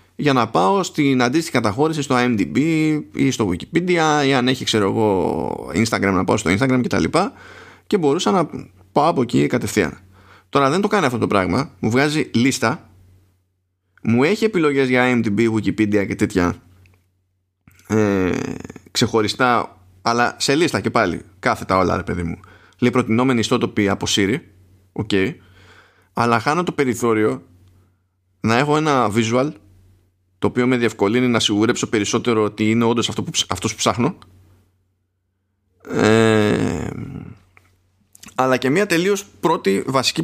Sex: male